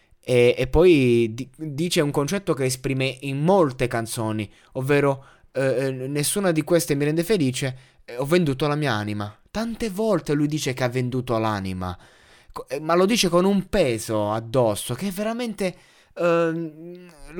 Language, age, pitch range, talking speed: Italian, 20-39, 120-165 Hz, 145 wpm